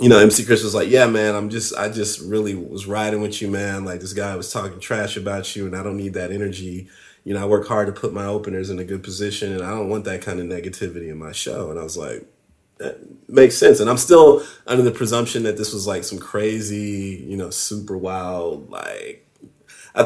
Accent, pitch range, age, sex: American, 100-120 Hz, 30-49, male